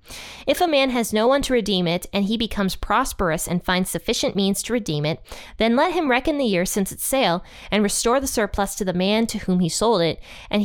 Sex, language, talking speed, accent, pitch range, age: female, English, 235 wpm, American, 180-240 Hz, 20-39